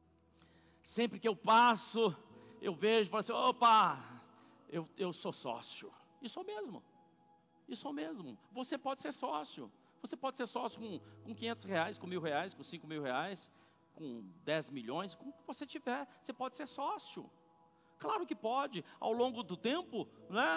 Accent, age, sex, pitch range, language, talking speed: Brazilian, 50-69, male, 210-265 Hz, Portuguese, 170 wpm